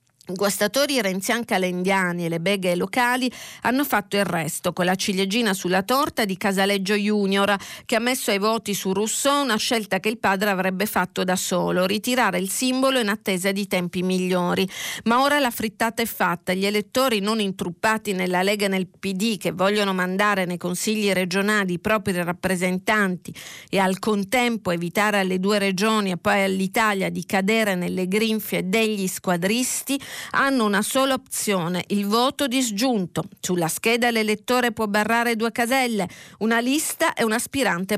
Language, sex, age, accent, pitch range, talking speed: Italian, female, 40-59, native, 185-230 Hz, 160 wpm